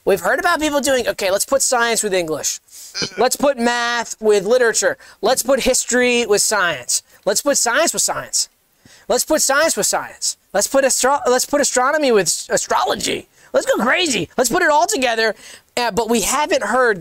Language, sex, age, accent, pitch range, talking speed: English, male, 20-39, American, 210-280 Hz, 185 wpm